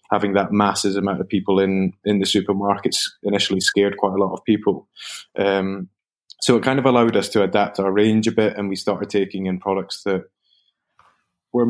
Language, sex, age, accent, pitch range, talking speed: English, male, 20-39, British, 95-110 Hz, 195 wpm